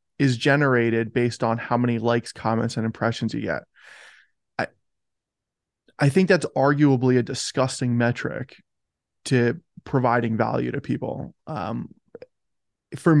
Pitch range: 120-145 Hz